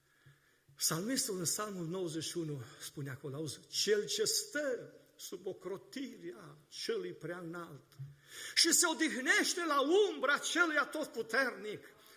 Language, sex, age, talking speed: Romanian, male, 50-69, 110 wpm